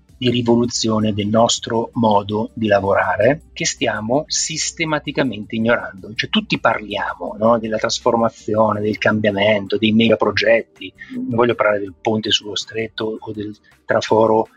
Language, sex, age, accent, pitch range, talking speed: Italian, male, 30-49, native, 105-120 Hz, 130 wpm